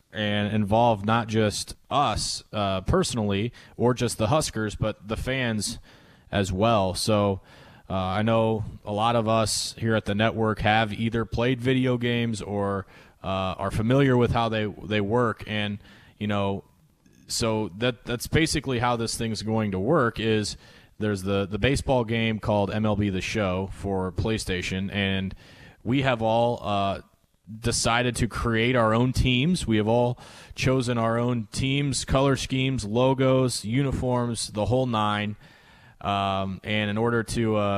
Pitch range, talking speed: 100-120 Hz, 155 wpm